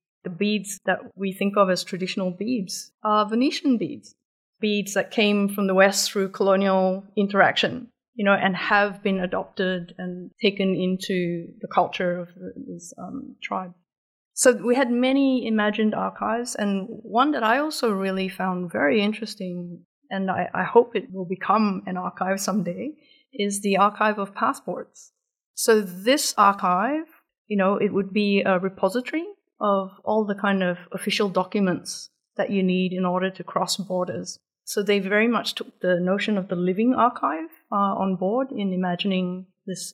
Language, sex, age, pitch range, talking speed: English, female, 30-49, 185-225 Hz, 160 wpm